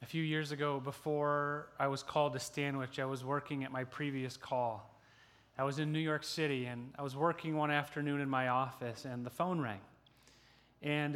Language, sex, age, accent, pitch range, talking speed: English, male, 30-49, American, 125-150 Hz, 200 wpm